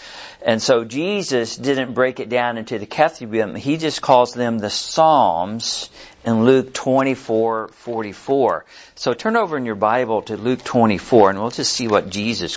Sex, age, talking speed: male, 50-69, 165 wpm